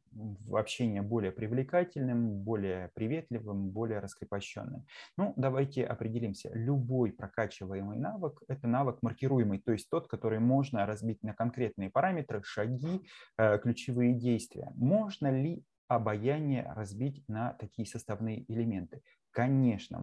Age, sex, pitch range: 20-39, male, 110-135 Hz